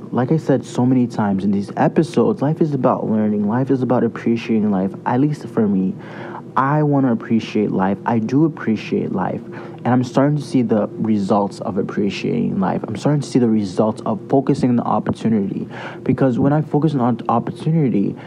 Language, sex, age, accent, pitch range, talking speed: English, male, 30-49, American, 110-150 Hz, 190 wpm